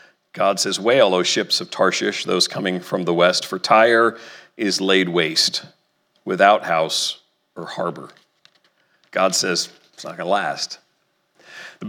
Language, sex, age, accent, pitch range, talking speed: English, male, 40-59, American, 120-155 Hz, 140 wpm